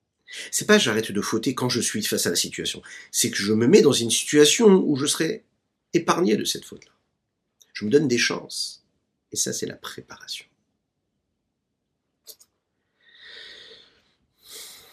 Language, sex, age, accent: French, male, 50-69, French